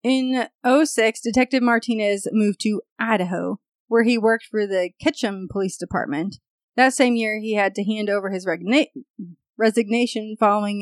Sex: female